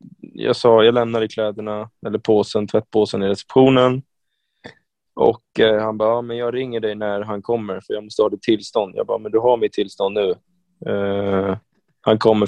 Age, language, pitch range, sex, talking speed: 20-39, Swedish, 105-120 Hz, male, 190 wpm